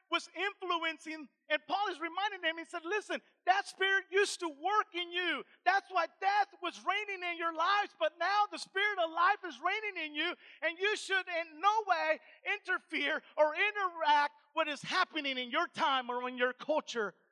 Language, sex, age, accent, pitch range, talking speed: English, male, 40-59, American, 255-325 Hz, 190 wpm